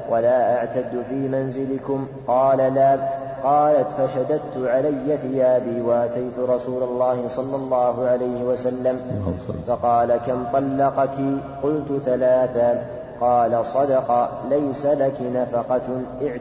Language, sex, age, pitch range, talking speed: Arabic, male, 30-49, 125-135 Hz, 100 wpm